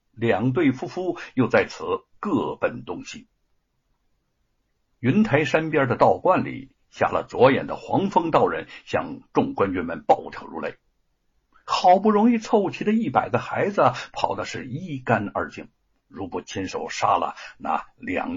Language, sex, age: Chinese, male, 60-79